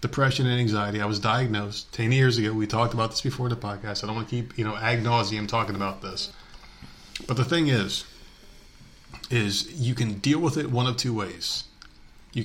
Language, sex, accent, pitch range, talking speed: English, male, American, 100-125 Hz, 200 wpm